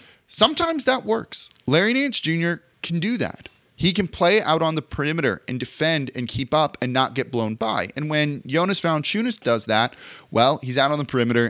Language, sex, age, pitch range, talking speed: English, male, 30-49, 110-150 Hz, 200 wpm